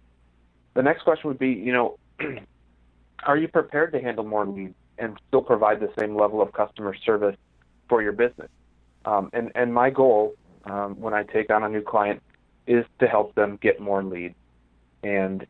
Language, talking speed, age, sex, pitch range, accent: English, 180 wpm, 30-49, male, 95-120 Hz, American